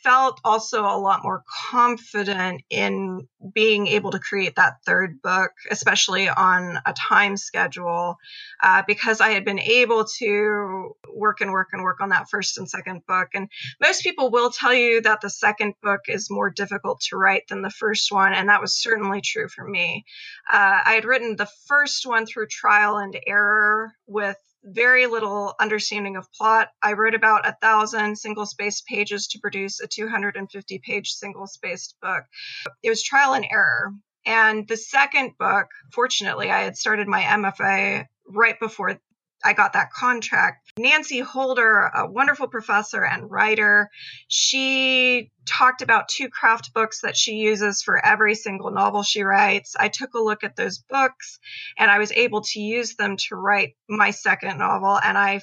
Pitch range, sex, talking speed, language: 205-250 Hz, female, 175 wpm, English